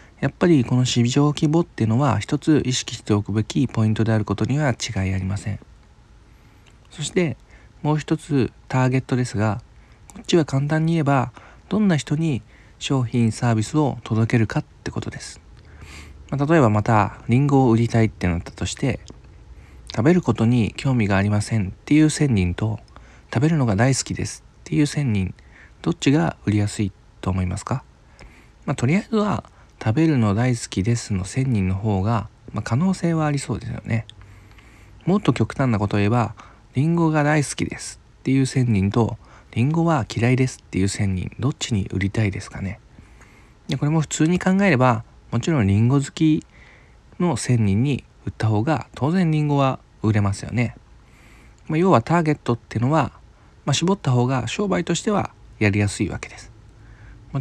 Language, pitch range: Japanese, 105-145 Hz